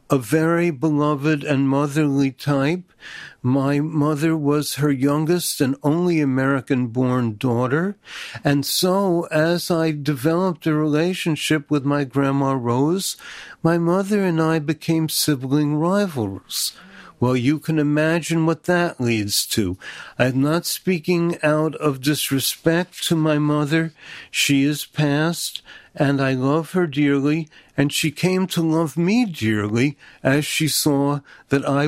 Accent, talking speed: American, 130 wpm